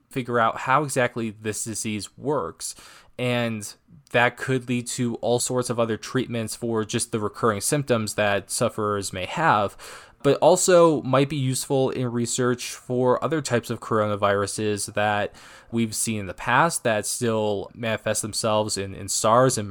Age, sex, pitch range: 20-39, male, 105-125 Hz